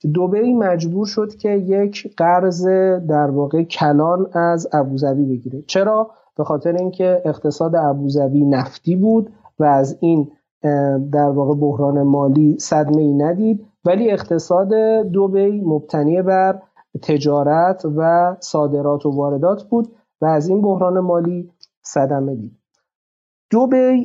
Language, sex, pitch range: Persian, male, 150-195 Hz